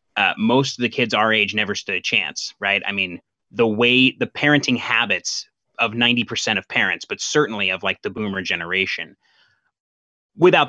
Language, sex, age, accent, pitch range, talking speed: English, male, 30-49, American, 105-130 Hz, 175 wpm